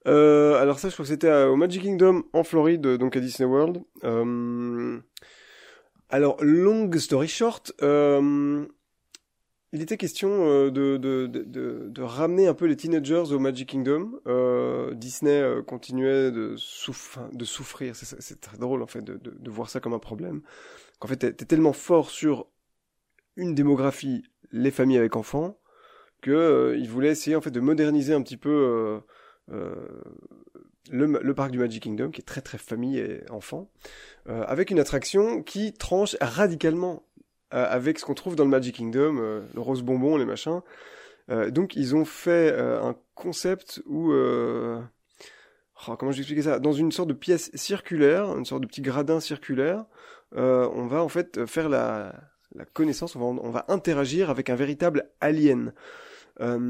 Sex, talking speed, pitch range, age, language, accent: male, 175 wpm, 130-165 Hz, 20-39, French, French